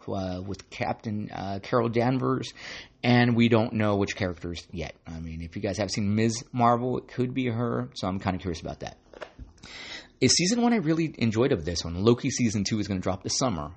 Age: 30-49